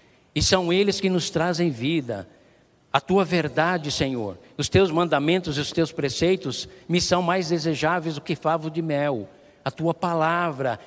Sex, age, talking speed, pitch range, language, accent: male, 60-79, 165 wpm, 165-205 Hz, Portuguese, Brazilian